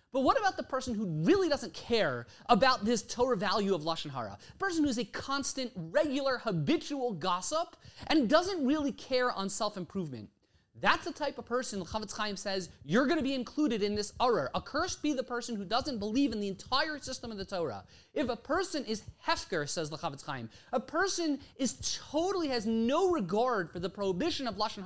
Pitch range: 200-285 Hz